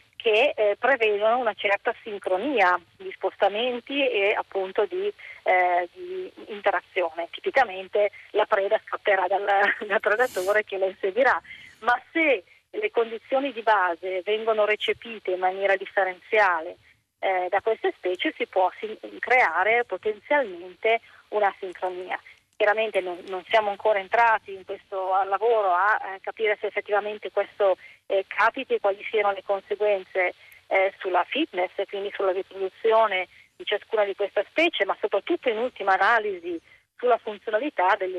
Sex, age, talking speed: female, 30-49, 130 wpm